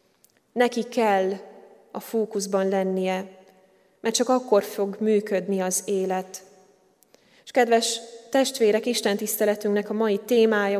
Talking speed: 105 wpm